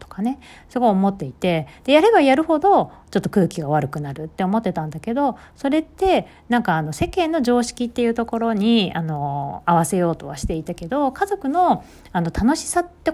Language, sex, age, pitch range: Japanese, female, 40-59, 165-270 Hz